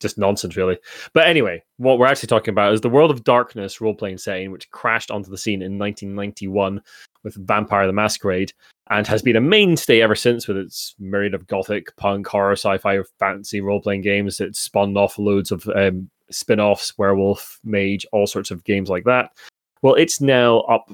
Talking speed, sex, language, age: 185 wpm, male, English, 20-39